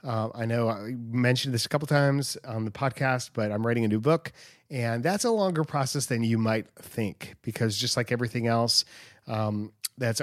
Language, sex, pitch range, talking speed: English, male, 110-135 Hz, 200 wpm